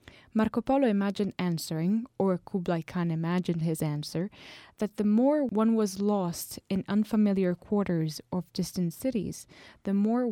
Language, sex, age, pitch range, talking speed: English, female, 20-39, 180-220 Hz, 140 wpm